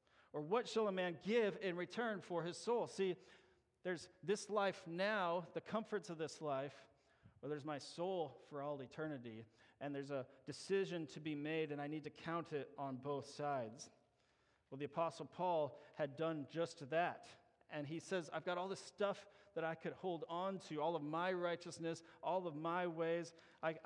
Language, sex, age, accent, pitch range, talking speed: English, male, 40-59, American, 150-185 Hz, 190 wpm